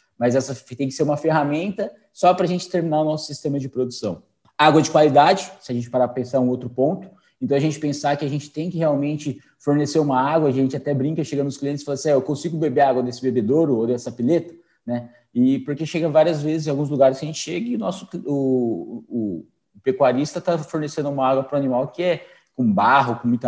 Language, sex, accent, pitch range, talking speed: Portuguese, male, Brazilian, 130-165 Hz, 245 wpm